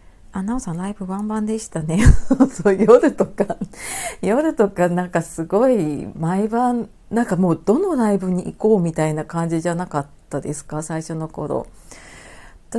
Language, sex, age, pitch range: Japanese, female, 40-59, 155-210 Hz